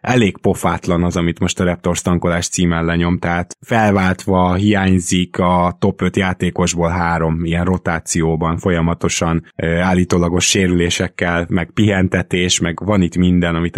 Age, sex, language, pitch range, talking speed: 20-39, male, Hungarian, 90-115 Hz, 130 wpm